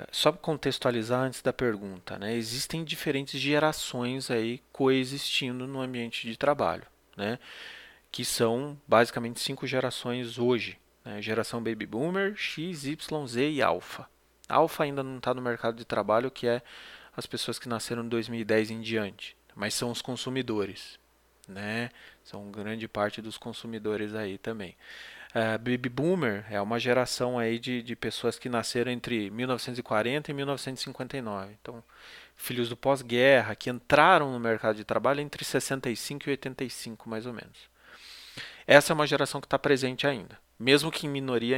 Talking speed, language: 155 wpm, Portuguese